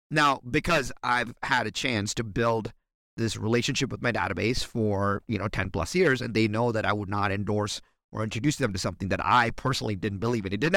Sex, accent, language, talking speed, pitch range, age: male, American, English, 225 wpm, 100-125 Hz, 30-49